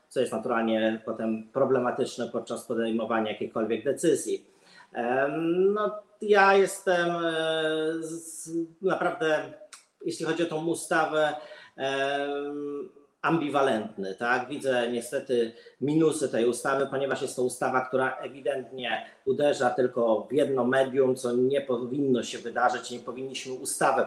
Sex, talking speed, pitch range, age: male, 105 wpm, 120-140 Hz, 40-59